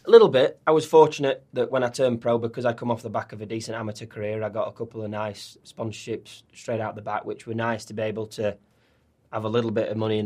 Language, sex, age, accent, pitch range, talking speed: English, male, 20-39, British, 110-120 Hz, 275 wpm